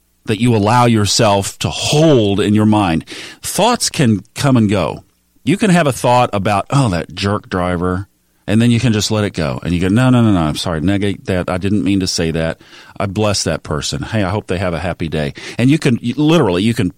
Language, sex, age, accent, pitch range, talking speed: English, male, 40-59, American, 90-125 Hz, 235 wpm